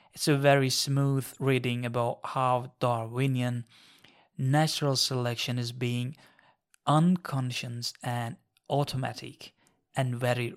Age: 30-49